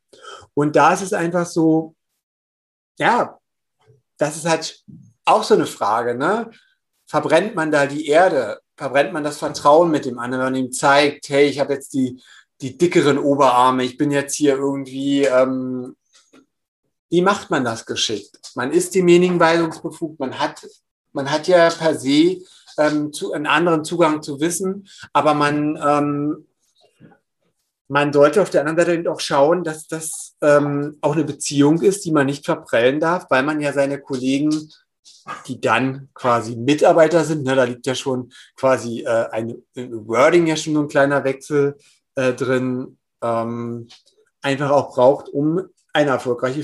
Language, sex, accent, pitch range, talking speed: German, male, German, 135-160 Hz, 160 wpm